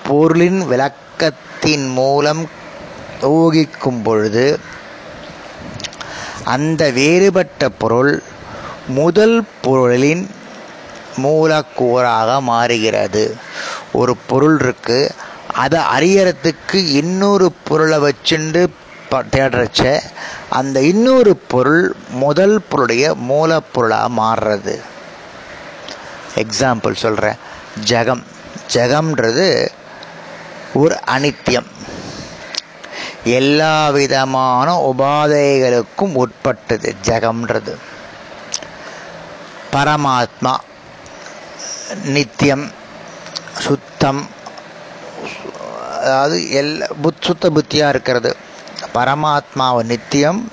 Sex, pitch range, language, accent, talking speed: male, 125-160 Hz, Tamil, native, 60 wpm